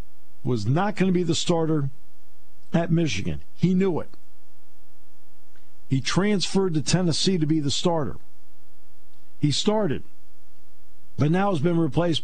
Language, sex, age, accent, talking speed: English, male, 50-69, American, 130 wpm